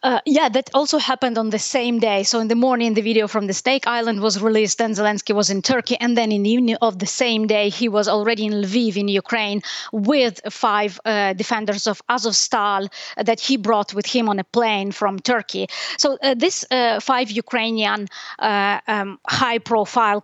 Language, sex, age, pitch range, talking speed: English, female, 20-39, 210-240 Hz, 200 wpm